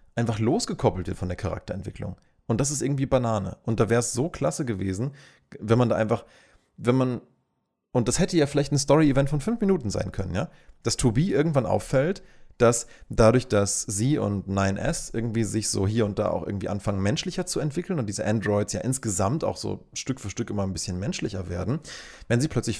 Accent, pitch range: German, 100-135 Hz